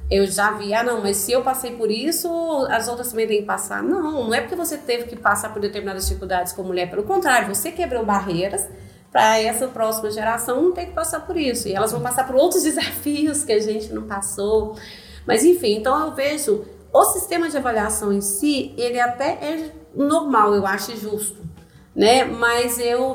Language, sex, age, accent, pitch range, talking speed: Portuguese, female, 30-49, Brazilian, 205-290 Hz, 205 wpm